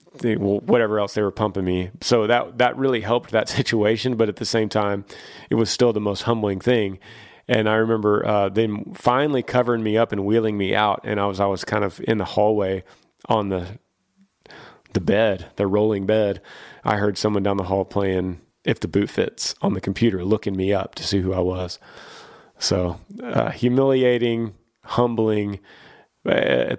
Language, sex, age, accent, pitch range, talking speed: English, male, 30-49, American, 95-115 Hz, 185 wpm